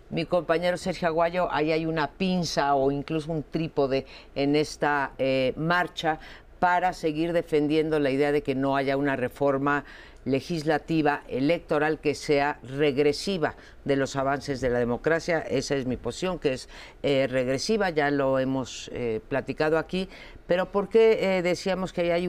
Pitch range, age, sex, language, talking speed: 145-185 Hz, 50-69, female, Spanish, 160 wpm